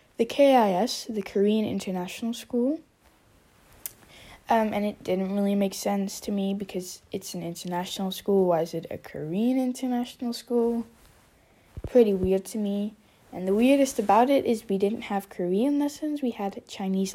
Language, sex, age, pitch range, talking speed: Dutch, female, 10-29, 185-235 Hz, 160 wpm